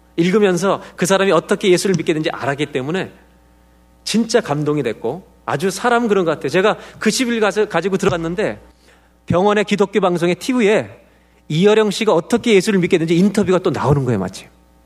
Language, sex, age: Korean, male, 40-59